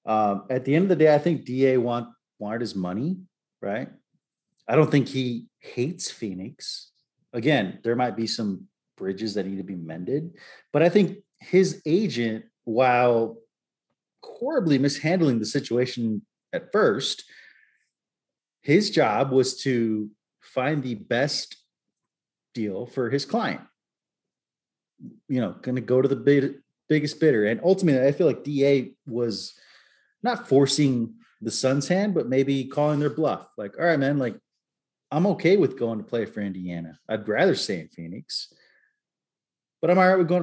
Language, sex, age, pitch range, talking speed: English, male, 30-49, 115-155 Hz, 155 wpm